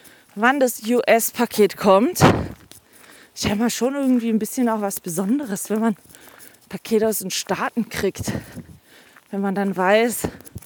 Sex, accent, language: female, German, German